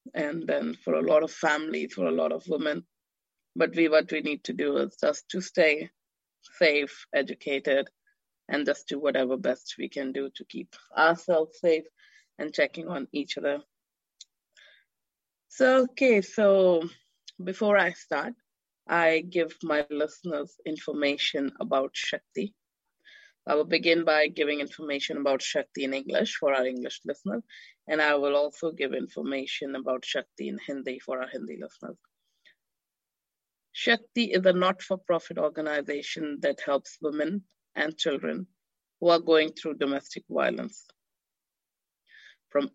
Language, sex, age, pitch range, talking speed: English, female, 20-39, 145-185 Hz, 140 wpm